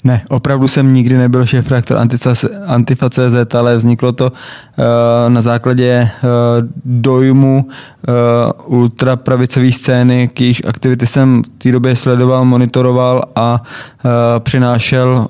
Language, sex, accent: Czech, male, native